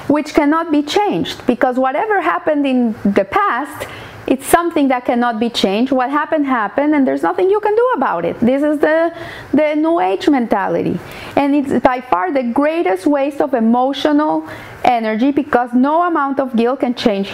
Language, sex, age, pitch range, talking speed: English, female, 30-49, 245-320 Hz, 175 wpm